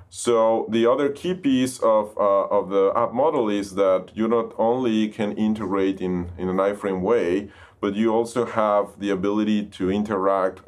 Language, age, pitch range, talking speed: English, 30-49, 95-110 Hz, 175 wpm